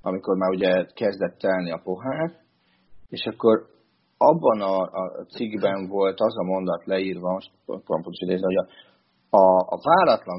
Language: Hungarian